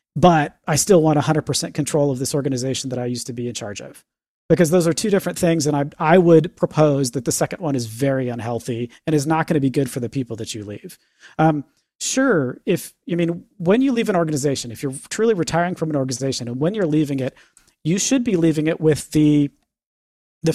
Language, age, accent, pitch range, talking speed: English, 40-59, American, 140-180 Hz, 230 wpm